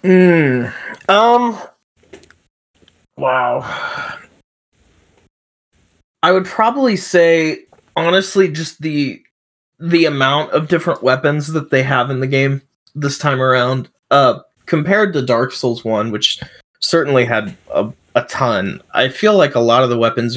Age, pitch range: 20-39, 105-150 Hz